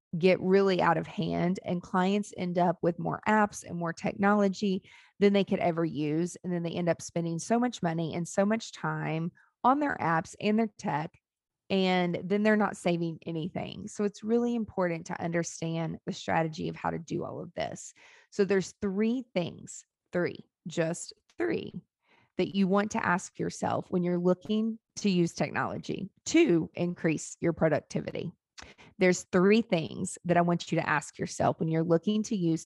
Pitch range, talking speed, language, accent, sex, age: 170-205 Hz, 180 wpm, English, American, female, 30-49